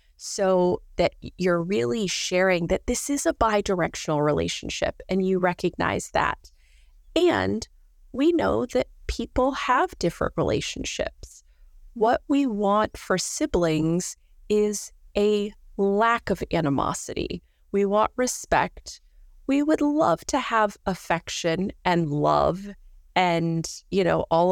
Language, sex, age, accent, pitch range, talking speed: English, female, 30-49, American, 160-220 Hz, 115 wpm